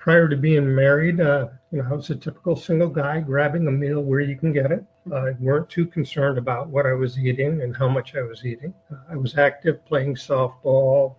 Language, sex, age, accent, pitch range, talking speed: English, male, 50-69, American, 130-155 Hz, 230 wpm